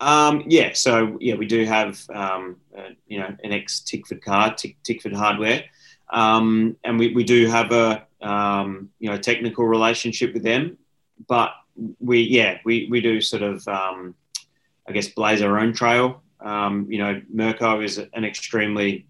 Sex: male